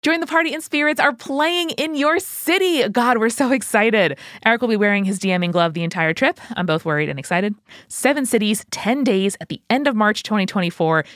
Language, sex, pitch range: English, female, 165-235 Hz